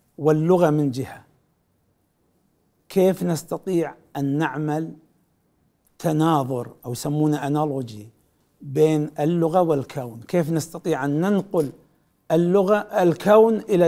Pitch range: 140-180 Hz